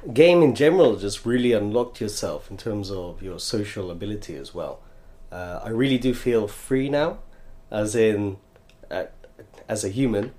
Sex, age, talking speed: male, 30-49, 160 wpm